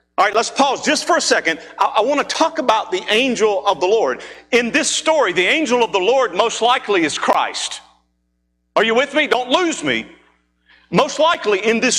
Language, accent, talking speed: English, American, 205 wpm